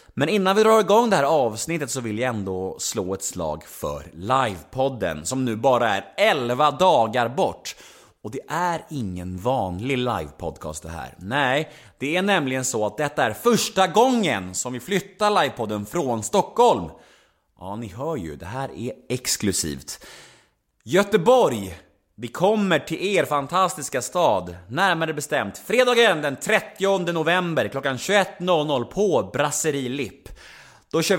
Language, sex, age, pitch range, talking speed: Swedish, male, 30-49, 120-195 Hz, 145 wpm